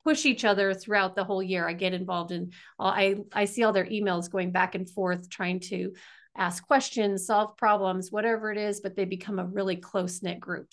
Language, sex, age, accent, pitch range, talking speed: English, female, 40-59, American, 200-240 Hz, 215 wpm